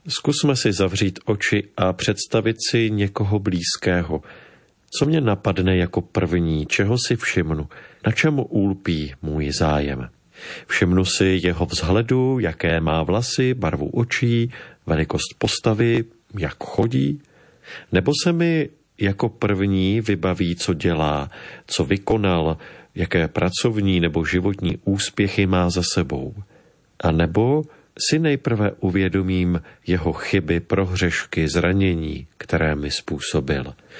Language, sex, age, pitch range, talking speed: Slovak, male, 40-59, 90-120 Hz, 115 wpm